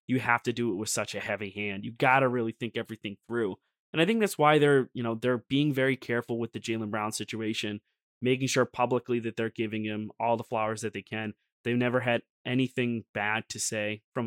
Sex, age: male, 20-39